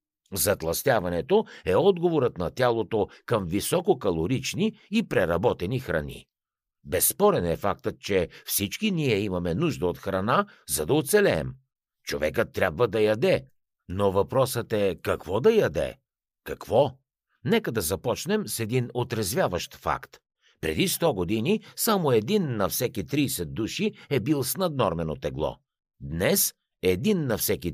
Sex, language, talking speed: male, Bulgarian, 130 wpm